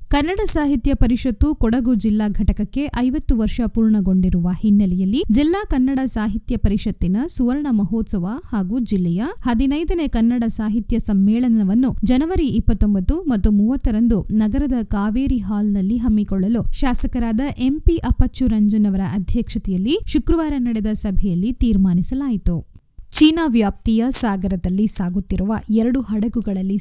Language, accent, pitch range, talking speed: Kannada, native, 200-250 Hz, 105 wpm